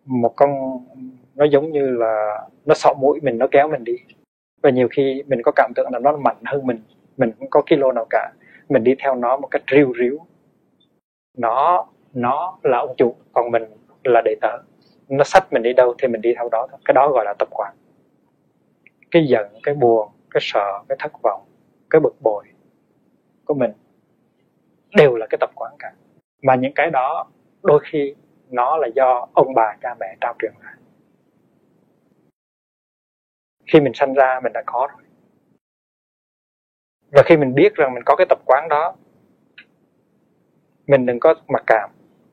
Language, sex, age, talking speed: Vietnamese, male, 20-39, 180 wpm